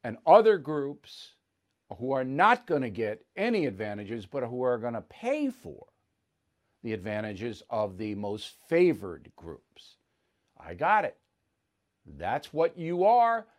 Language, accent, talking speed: English, American, 140 wpm